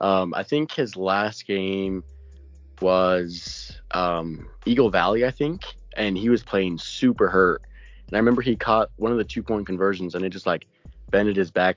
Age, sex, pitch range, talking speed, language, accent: 20-39, male, 85-100 Hz, 180 wpm, English, American